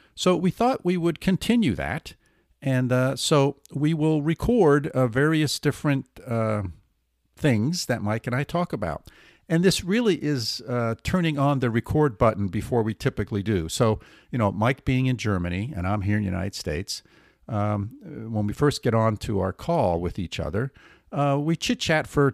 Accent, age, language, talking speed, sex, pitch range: American, 50-69, English, 185 wpm, male, 100-145 Hz